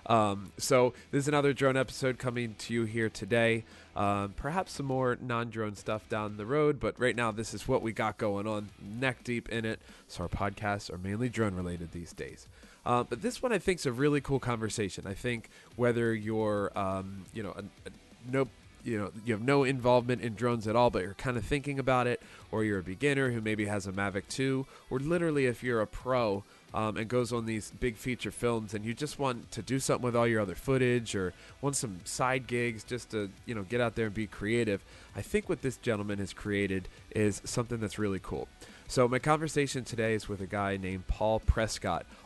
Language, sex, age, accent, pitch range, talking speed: English, male, 20-39, American, 100-125 Hz, 225 wpm